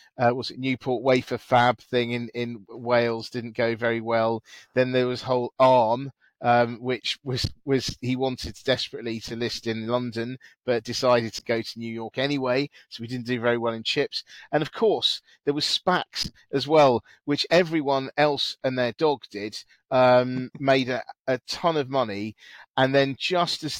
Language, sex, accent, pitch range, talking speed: English, male, British, 120-140 Hz, 180 wpm